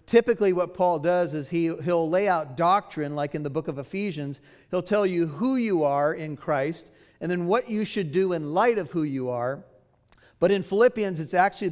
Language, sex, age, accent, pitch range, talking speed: English, male, 50-69, American, 145-185 Hz, 205 wpm